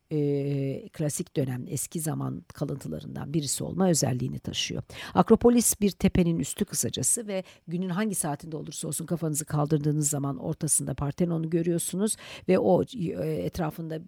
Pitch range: 140-180 Hz